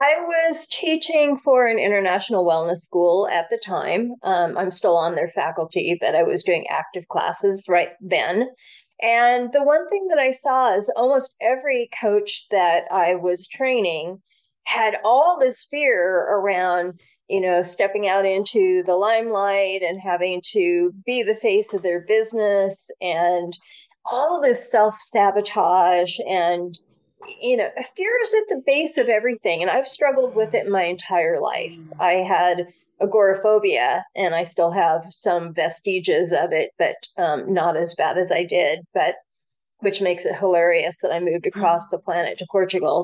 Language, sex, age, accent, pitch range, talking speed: English, female, 30-49, American, 175-260 Hz, 165 wpm